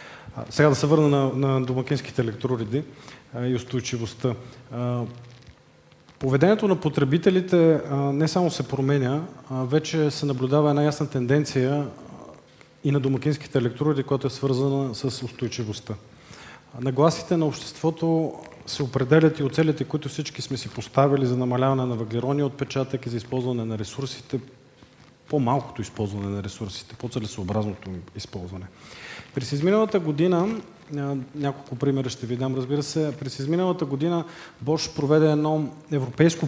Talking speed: 125 wpm